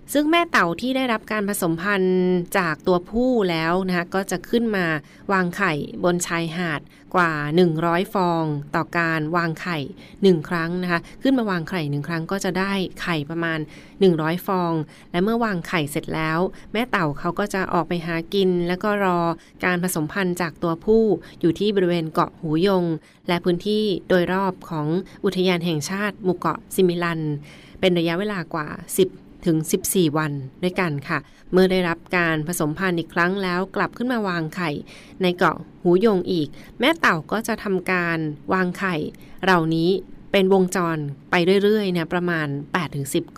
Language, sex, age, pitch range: Thai, female, 20-39, 165-190 Hz